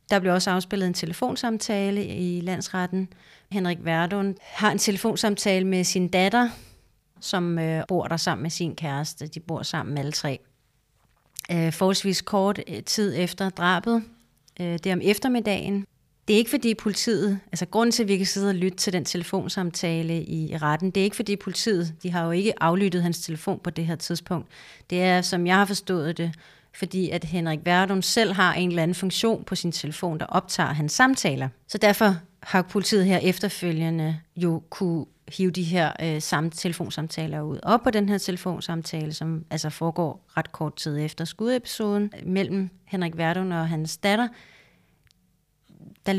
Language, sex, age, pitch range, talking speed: Danish, female, 30-49, 165-195 Hz, 175 wpm